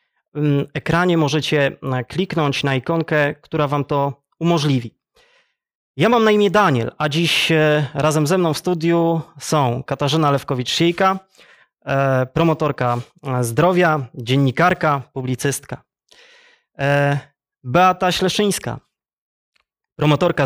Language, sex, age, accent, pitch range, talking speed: Polish, male, 20-39, native, 140-185 Hz, 95 wpm